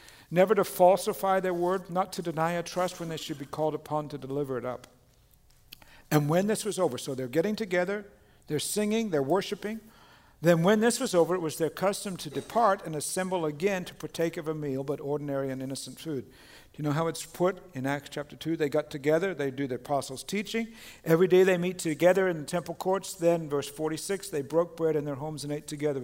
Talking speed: 220 wpm